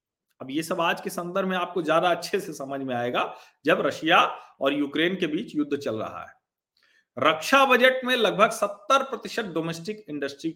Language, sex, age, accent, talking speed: Hindi, male, 40-59, native, 180 wpm